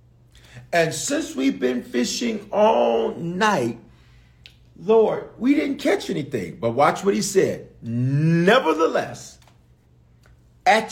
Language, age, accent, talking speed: English, 40-59, American, 105 wpm